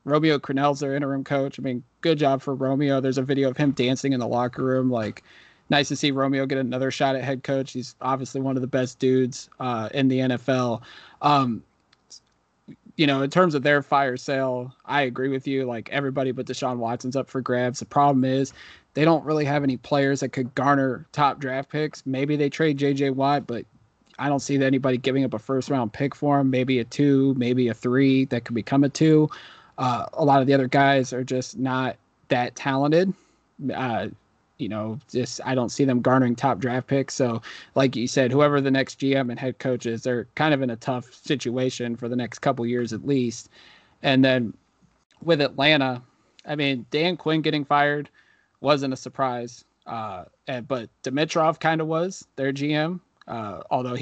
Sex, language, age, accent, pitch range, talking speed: male, English, 20-39, American, 125-145 Hz, 200 wpm